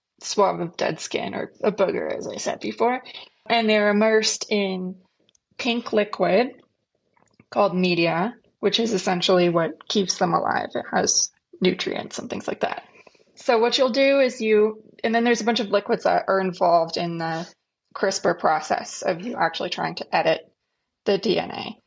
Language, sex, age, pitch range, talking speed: English, female, 20-39, 185-225 Hz, 165 wpm